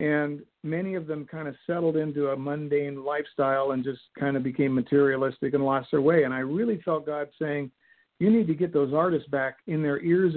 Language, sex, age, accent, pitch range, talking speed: English, male, 50-69, American, 135-165 Hz, 215 wpm